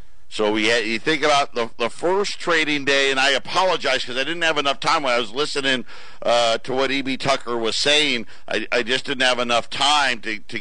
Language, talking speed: English, 225 wpm